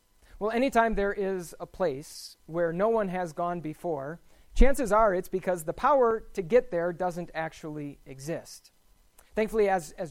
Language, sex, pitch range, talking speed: English, male, 150-190 Hz, 160 wpm